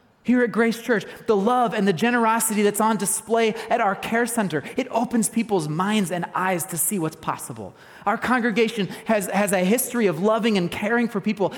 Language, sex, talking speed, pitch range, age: English, male, 195 wpm, 175-235 Hz, 30-49